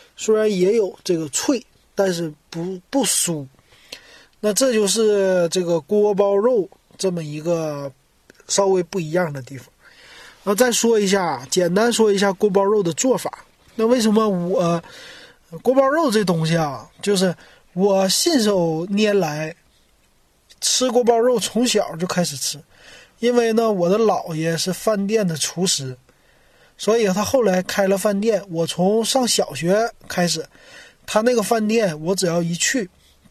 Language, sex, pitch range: Chinese, male, 170-225 Hz